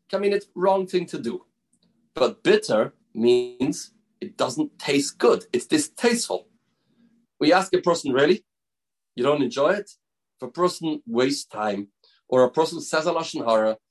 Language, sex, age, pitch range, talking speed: English, male, 40-59, 165-240 Hz, 160 wpm